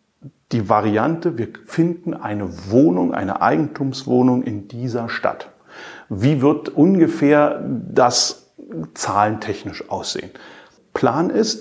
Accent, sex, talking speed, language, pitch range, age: German, male, 100 wpm, German, 115-160 Hz, 40-59